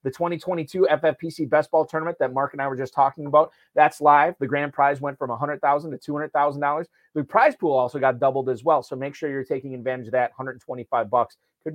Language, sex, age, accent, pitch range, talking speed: English, male, 30-49, American, 130-160 Hz, 220 wpm